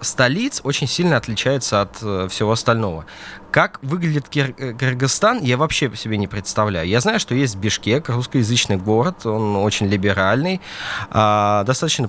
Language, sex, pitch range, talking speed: Russian, male, 95-130 Hz, 140 wpm